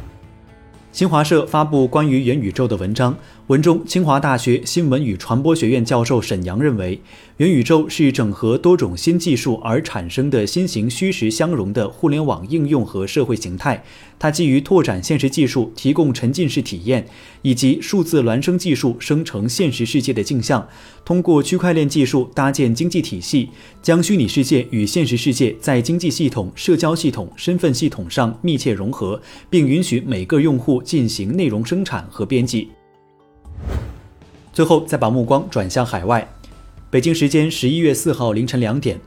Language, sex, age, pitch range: Chinese, male, 30-49, 110-150 Hz